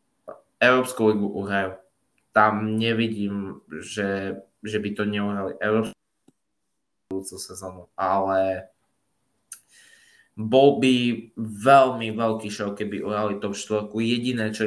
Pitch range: 100-110 Hz